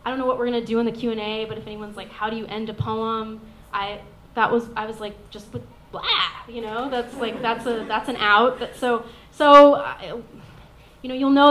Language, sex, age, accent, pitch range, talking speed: English, female, 20-39, American, 190-245 Hz, 255 wpm